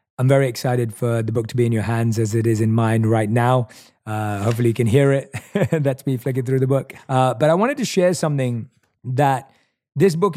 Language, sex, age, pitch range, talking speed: English, male, 30-49, 115-150 Hz, 230 wpm